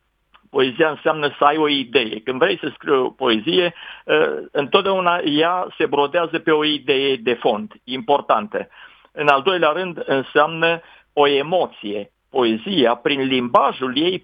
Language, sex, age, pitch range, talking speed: Romanian, male, 50-69, 135-180 Hz, 140 wpm